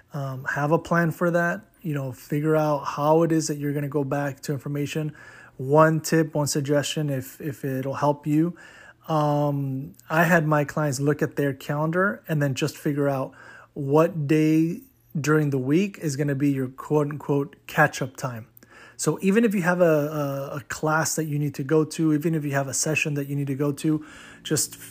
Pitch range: 140-160 Hz